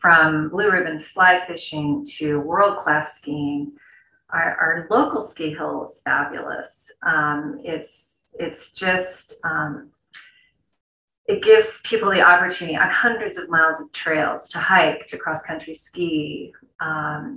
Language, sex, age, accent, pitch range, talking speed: English, female, 30-49, American, 150-190 Hz, 135 wpm